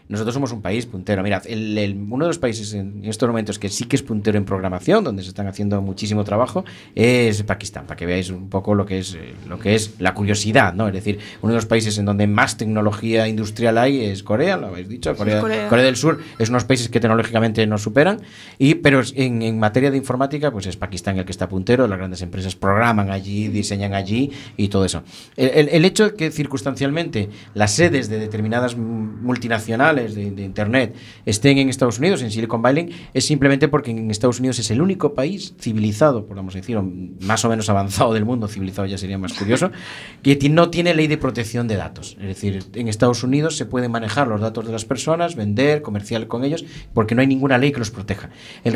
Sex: male